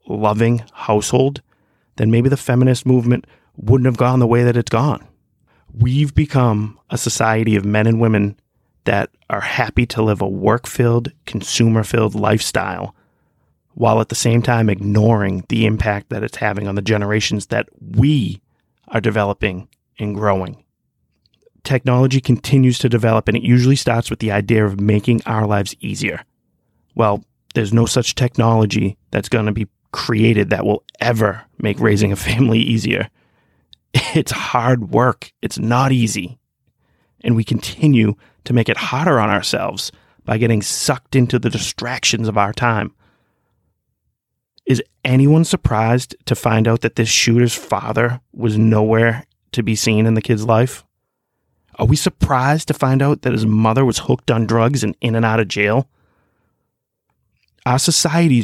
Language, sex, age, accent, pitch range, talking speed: English, male, 30-49, American, 105-125 Hz, 155 wpm